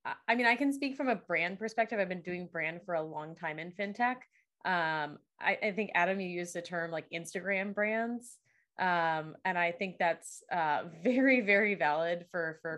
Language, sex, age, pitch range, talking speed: English, female, 20-39, 170-200 Hz, 195 wpm